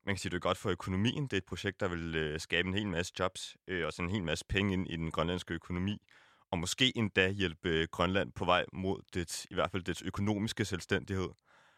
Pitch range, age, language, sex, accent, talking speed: 90-110 Hz, 30-49, Danish, male, native, 250 wpm